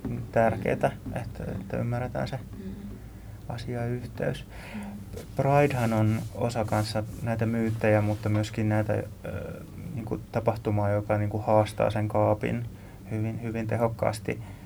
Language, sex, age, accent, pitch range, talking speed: Finnish, male, 20-39, native, 100-115 Hz, 105 wpm